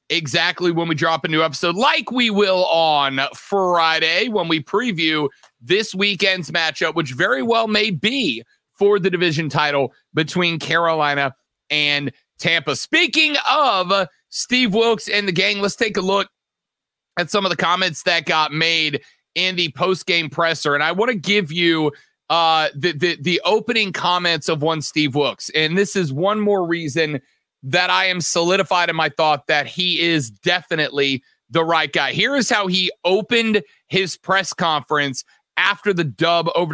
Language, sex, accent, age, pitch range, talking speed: English, male, American, 30-49, 160-200 Hz, 170 wpm